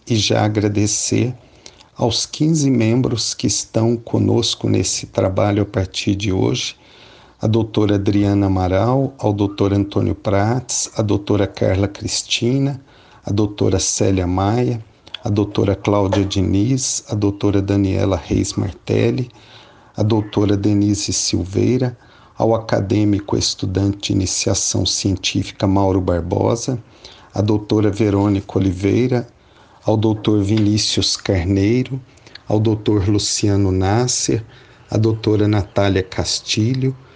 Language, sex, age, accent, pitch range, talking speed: Portuguese, male, 50-69, Brazilian, 100-115 Hz, 110 wpm